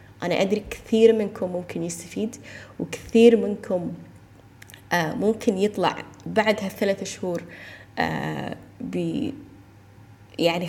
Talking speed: 90 wpm